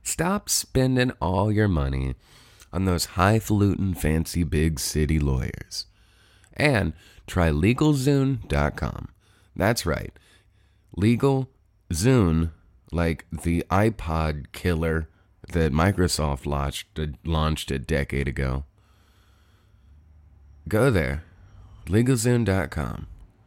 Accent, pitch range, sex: American, 80-105 Hz, male